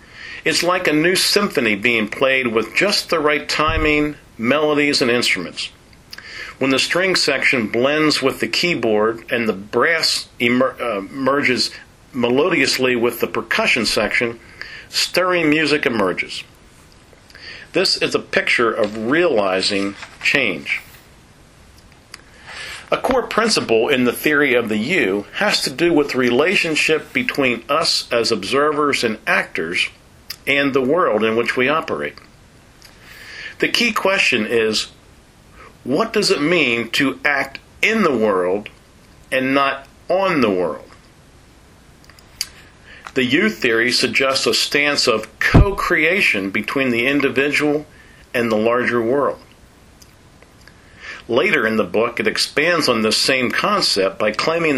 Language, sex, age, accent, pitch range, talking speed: English, male, 50-69, American, 115-150 Hz, 130 wpm